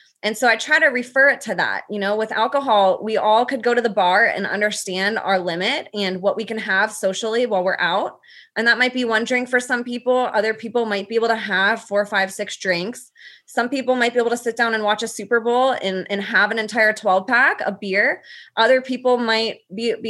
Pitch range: 200-245 Hz